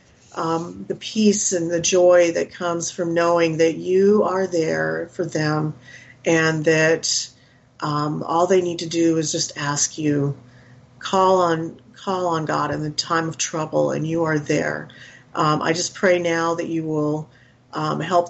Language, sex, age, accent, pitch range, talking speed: English, female, 40-59, American, 150-170 Hz, 170 wpm